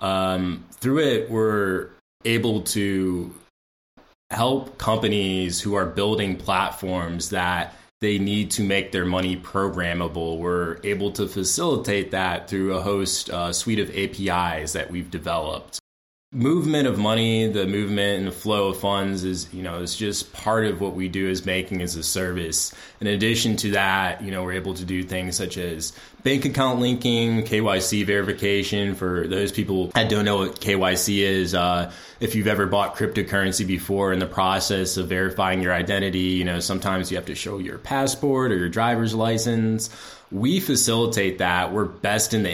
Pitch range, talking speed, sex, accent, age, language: 90-105 Hz, 170 wpm, male, American, 20-39, English